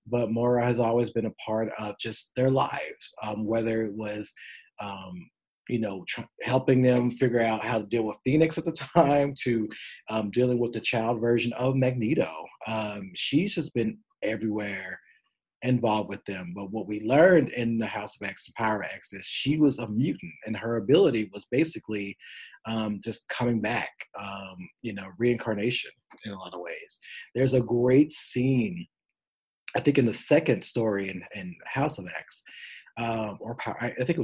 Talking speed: 180 wpm